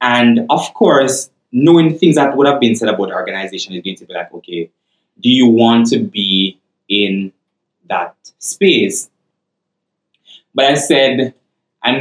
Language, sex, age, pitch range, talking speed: English, male, 20-39, 110-140 Hz, 155 wpm